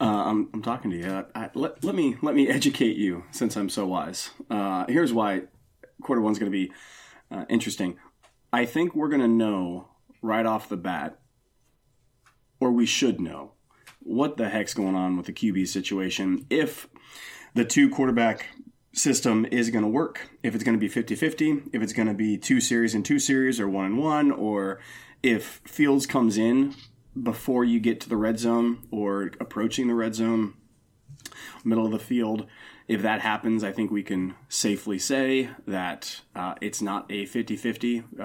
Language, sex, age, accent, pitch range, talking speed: English, male, 30-49, American, 105-125 Hz, 185 wpm